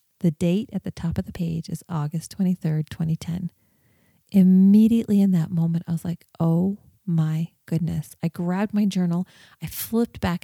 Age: 30-49